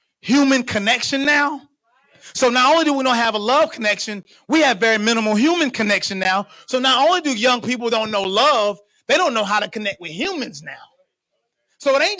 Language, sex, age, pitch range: English, male, 30-49, 210-275 Hz